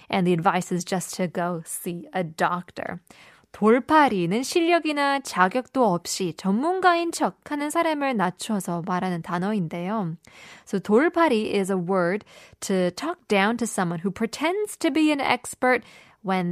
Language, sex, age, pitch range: Korean, female, 20-39, 180-260 Hz